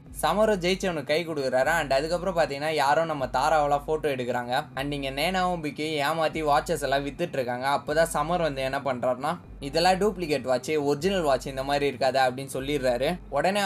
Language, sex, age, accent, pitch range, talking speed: Tamil, male, 20-39, native, 135-165 Hz, 165 wpm